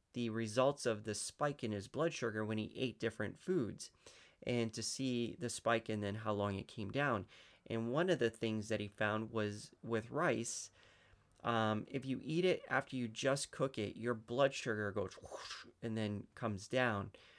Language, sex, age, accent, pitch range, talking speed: English, male, 30-49, American, 110-135 Hz, 190 wpm